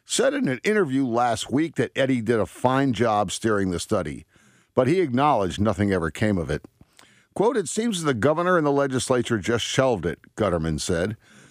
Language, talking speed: English, 190 wpm